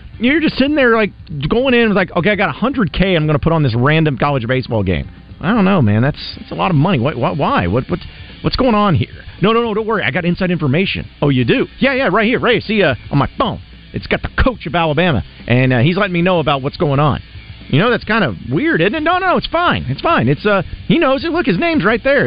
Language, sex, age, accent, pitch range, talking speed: English, male, 40-59, American, 130-195 Hz, 290 wpm